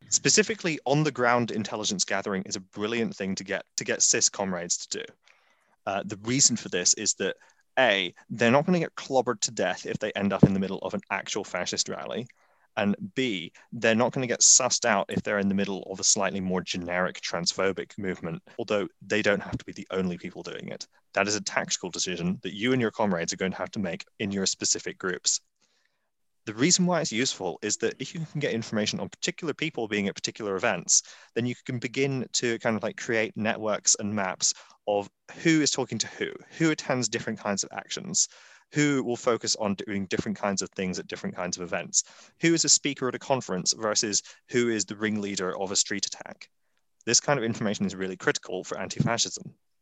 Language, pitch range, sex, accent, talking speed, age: English, 95-130 Hz, male, British, 215 wpm, 20-39